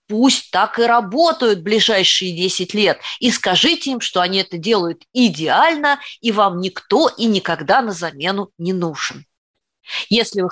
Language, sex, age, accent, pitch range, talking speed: Russian, female, 20-39, native, 165-215 Hz, 150 wpm